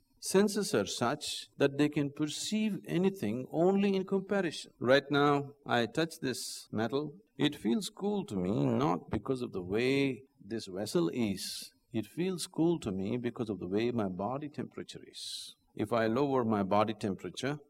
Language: Persian